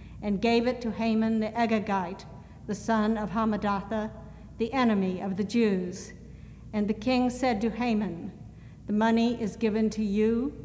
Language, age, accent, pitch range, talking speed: English, 60-79, American, 210-235 Hz, 160 wpm